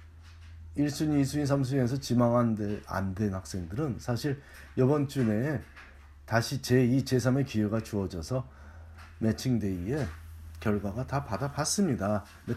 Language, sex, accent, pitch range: Korean, male, native, 85-135 Hz